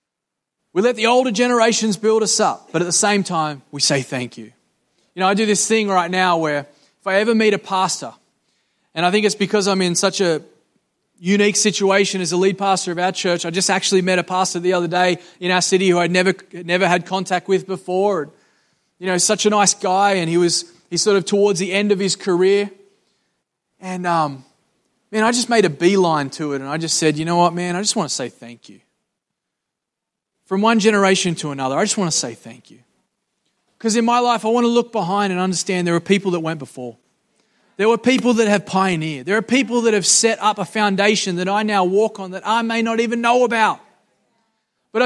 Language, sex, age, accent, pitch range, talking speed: English, male, 20-39, Australian, 180-220 Hz, 225 wpm